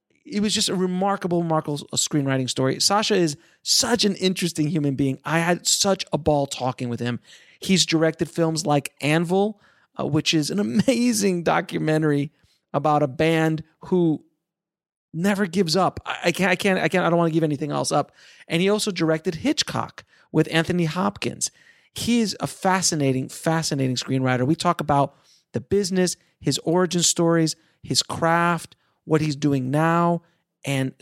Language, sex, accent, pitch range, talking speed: English, male, American, 140-180 Hz, 165 wpm